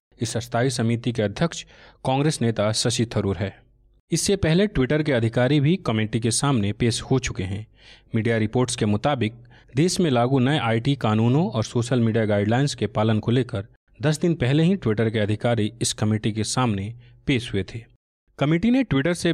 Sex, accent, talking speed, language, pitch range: male, native, 185 wpm, Hindi, 115-150 Hz